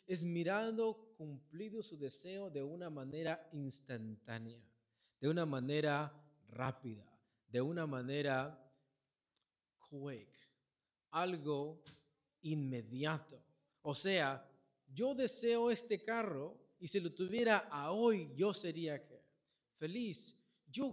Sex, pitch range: male, 135-205 Hz